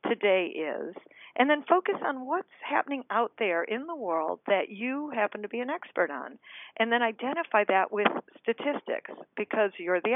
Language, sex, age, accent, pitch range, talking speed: English, female, 50-69, American, 190-250 Hz, 175 wpm